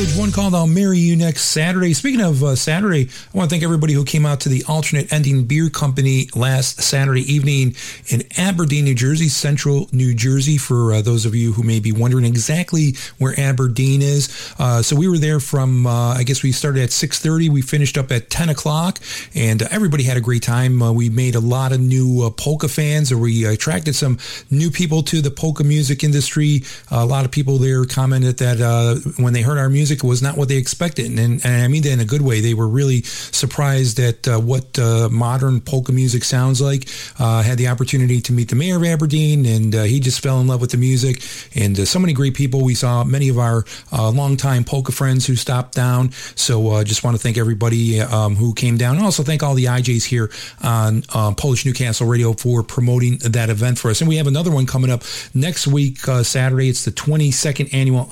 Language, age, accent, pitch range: English, 40-59, American, 120-145 Hz